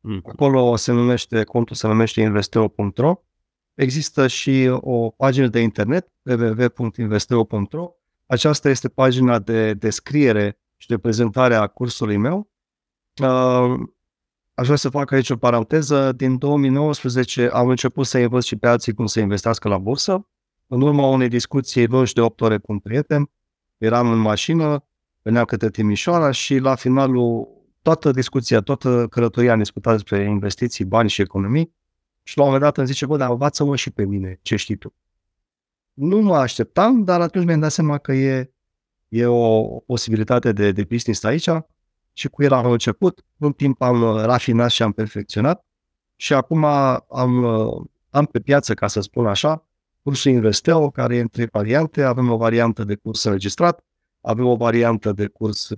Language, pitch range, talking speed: Romanian, 110-140 Hz, 160 wpm